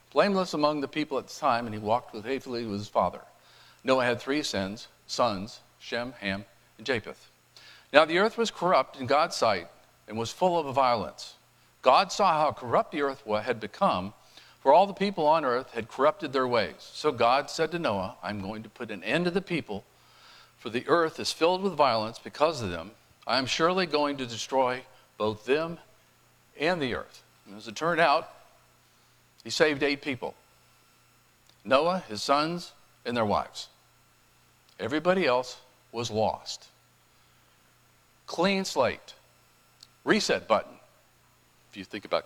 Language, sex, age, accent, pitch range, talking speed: English, male, 50-69, American, 115-160 Hz, 165 wpm